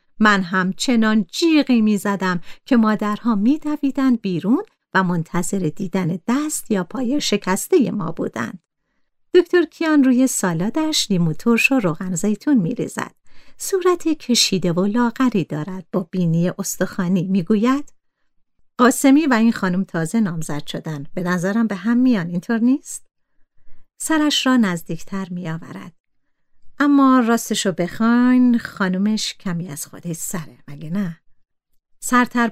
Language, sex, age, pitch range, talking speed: Persian, female, 50-69, 185-250 Hz, 125 wpm